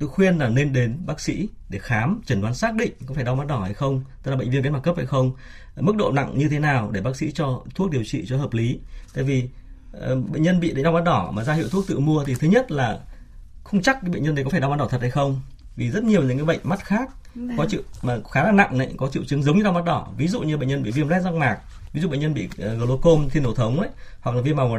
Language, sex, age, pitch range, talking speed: Vietnamese, male, 20-39, 125-170 Hz, 305 wpm